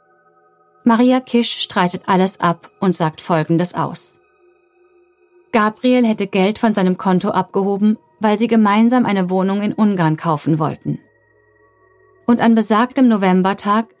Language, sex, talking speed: German, female, 125 wpm